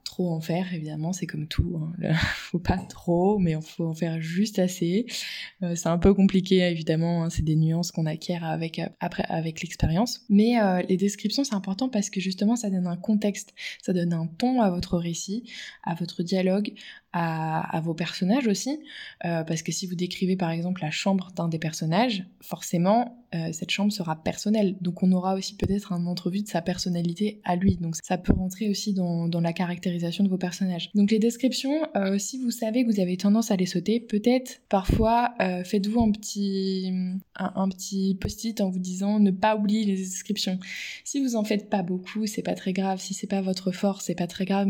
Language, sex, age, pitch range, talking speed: French, female, 20-39, 175-210 Hz, 210 wpm